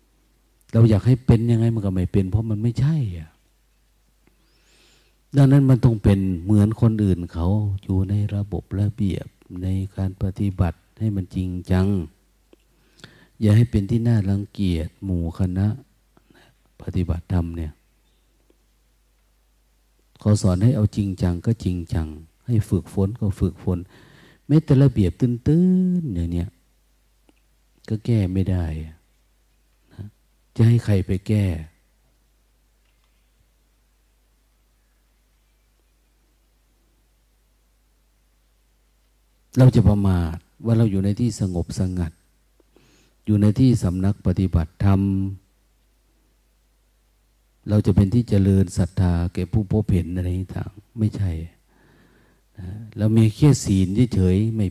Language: Thai